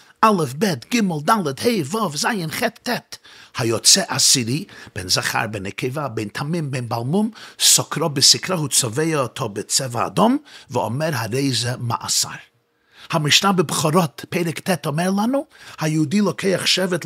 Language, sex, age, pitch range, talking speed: Hebrew, male, 50-69, 130-185 Hz, 135 wpm